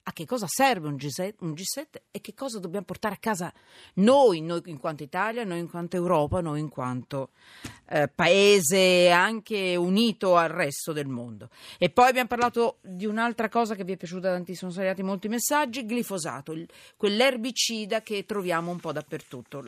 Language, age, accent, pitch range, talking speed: Italian, 40-59, native, 165-235 Hz, 180 wpm